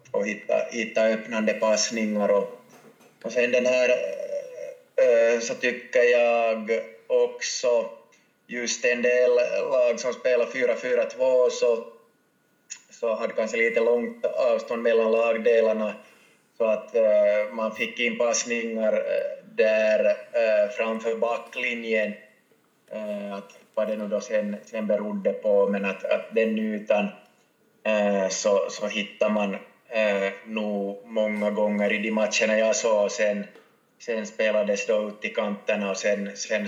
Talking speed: 115 wpm